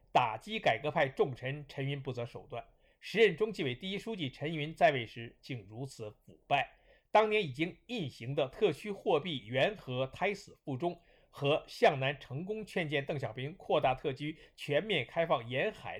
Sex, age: male, 50-69